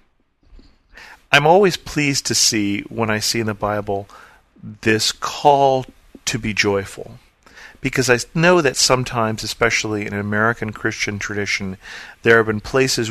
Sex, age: male, 40-59